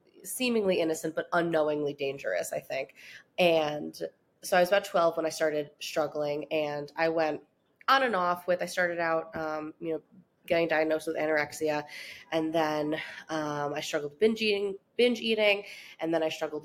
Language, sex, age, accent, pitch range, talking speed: English, female, 20-39, American, 155-200 Hz, 170 wpm